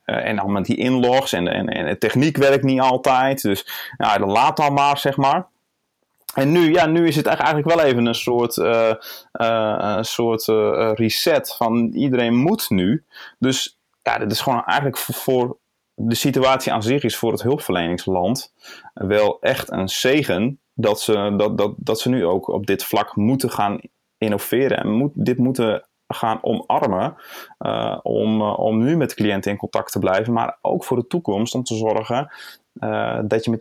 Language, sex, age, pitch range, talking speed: Dutch, male, 30-49, 110-130 Hz, 190 wpm